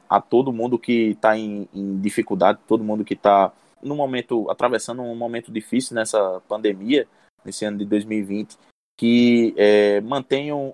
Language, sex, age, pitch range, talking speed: Portuguese, male, 20-39, 110-145 Hz, 135 wpm